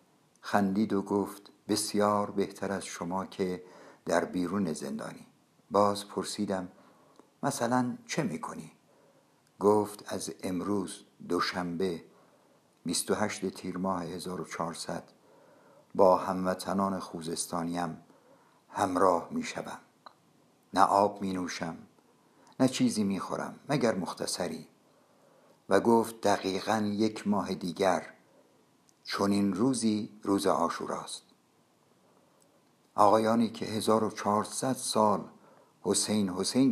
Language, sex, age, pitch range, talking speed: Persian, male, 60-79, 95-110 Hz, 95 wpm